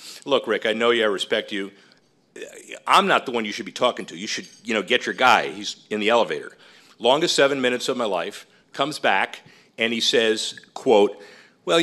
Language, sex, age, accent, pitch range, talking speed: English, male, 40-59, American, 115-155 Hz, 210 wpm